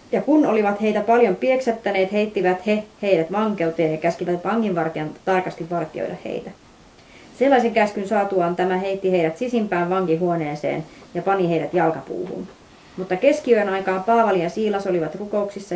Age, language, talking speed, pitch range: 30-49, Finnish, 135 wpm, 175-215 Hz